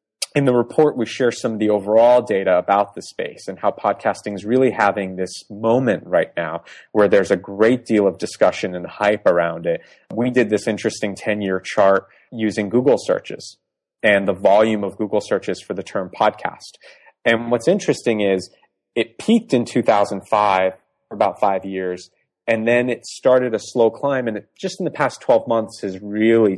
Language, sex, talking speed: English, male, 185 wpm